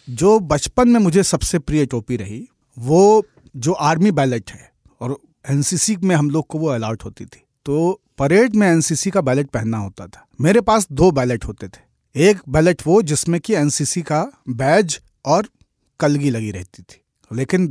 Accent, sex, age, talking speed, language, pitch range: native, male, 40-59, 175 wpm, Hindi, 135-185 Hz